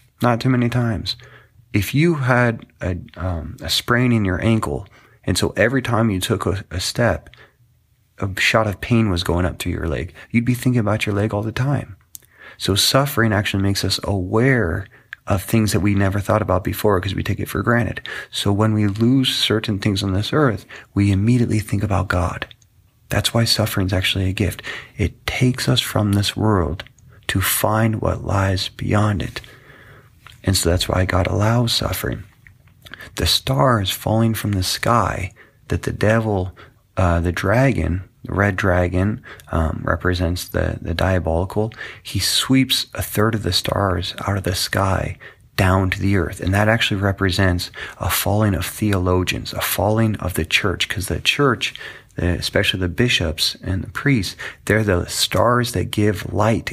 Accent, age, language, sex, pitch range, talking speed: American, 30-49, English, male, 95-115 Hz, 175 wpm